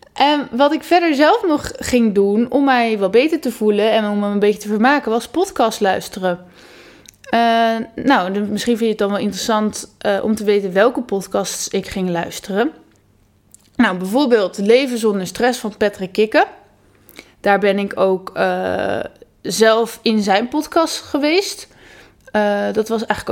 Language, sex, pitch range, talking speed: Dutch, female, 205-255 Hz, 155 wpm